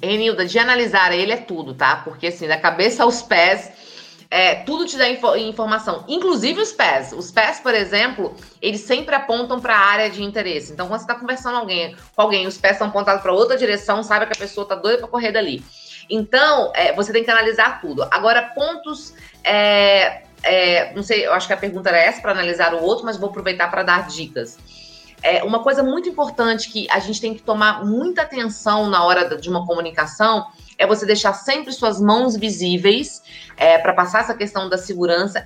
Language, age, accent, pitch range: Portuguese, 20-39, Brazilian, 180-235 Hz